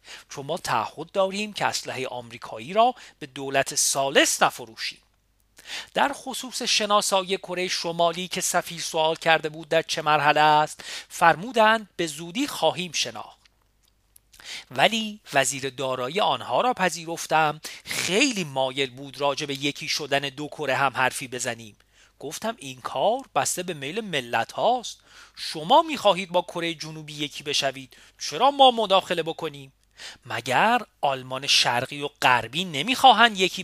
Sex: male